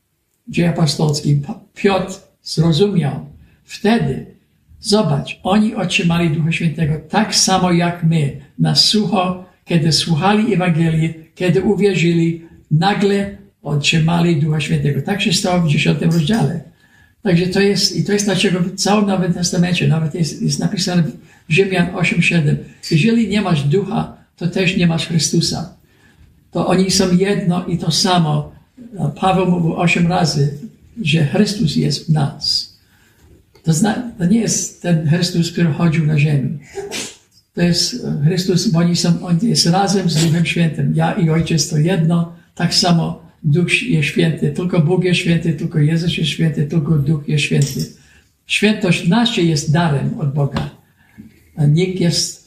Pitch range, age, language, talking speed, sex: 160-190 Hz, 60-79, Polish, 145 wpm, male